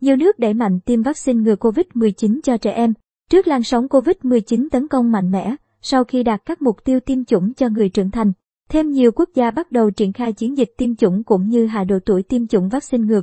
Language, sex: Vietnamese, male